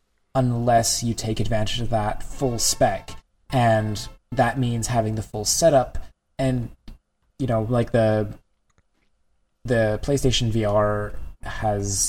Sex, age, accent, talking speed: male, 20-39, American, 120 wpm